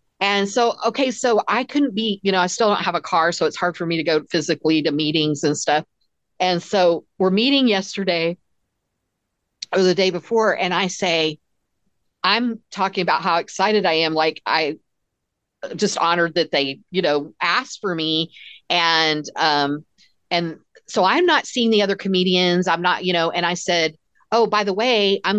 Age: 50-69